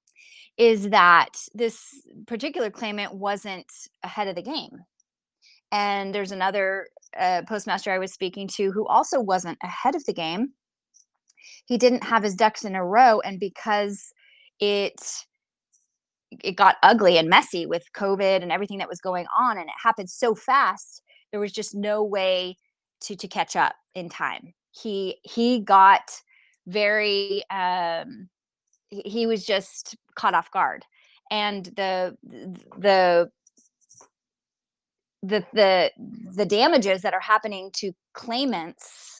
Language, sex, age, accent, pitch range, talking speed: English, female, 20-39, American, 185-235 Hz, 140 wpm